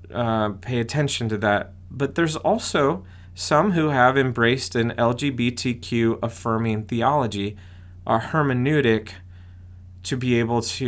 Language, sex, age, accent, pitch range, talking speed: English, male, 30-49, American, 100-130 Hz, 120 wpm